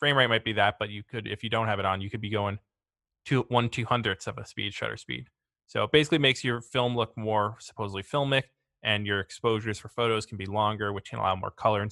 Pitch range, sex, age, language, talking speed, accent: 105-125 Hz, male, 20-39, English, 255 wpm, American